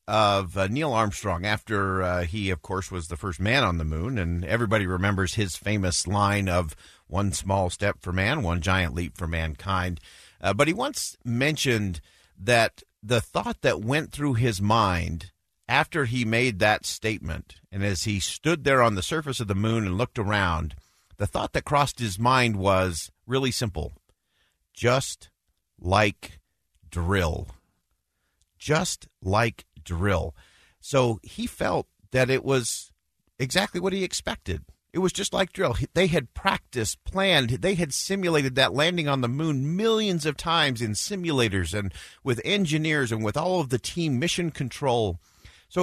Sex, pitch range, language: male, 95-155 Hz, English